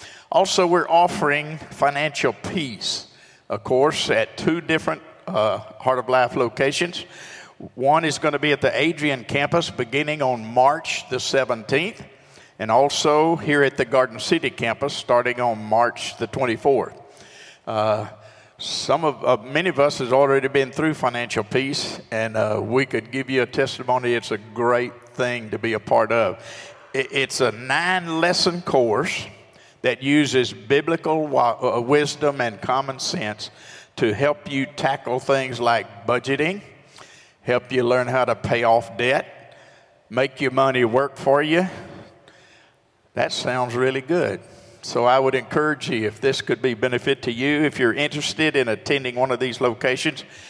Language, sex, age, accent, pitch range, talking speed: English, male, 50-69, American, 120-145 Hz, 155 wpm